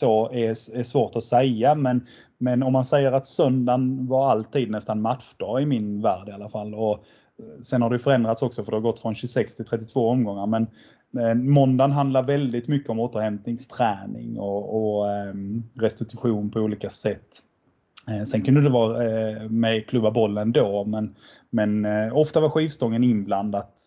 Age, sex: 20-39, male